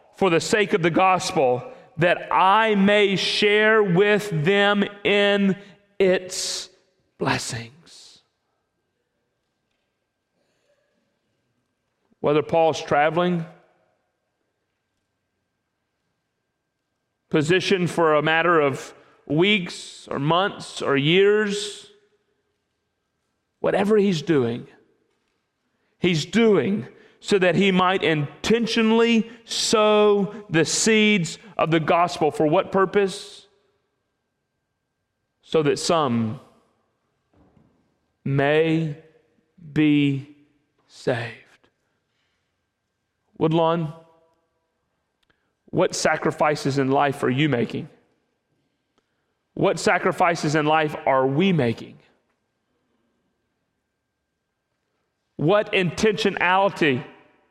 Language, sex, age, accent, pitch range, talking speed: English, male, 40-59, American, 150-200 Hz, 75 wpm